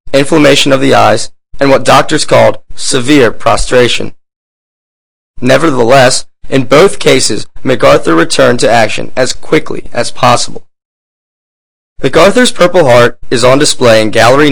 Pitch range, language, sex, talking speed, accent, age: 105-135 Hz, English, male, 125 wpm, American, 20-39